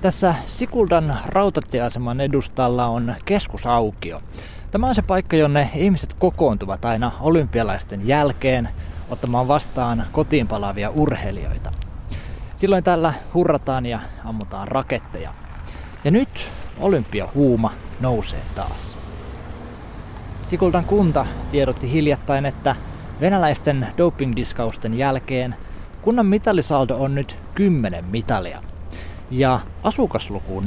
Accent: native